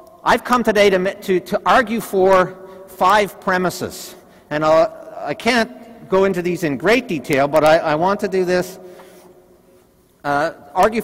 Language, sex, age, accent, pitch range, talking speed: French, male, 50-69, American, 155-205 Hz, 160 wpm